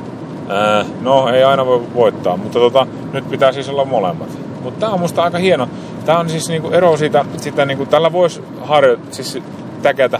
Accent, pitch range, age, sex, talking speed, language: native, 100-140 Hz, 30-49, male, 180 wpm, Finnish